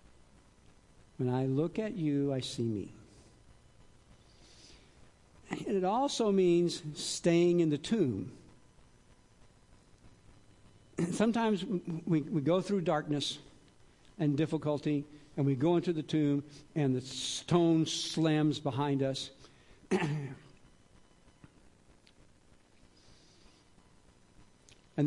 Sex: male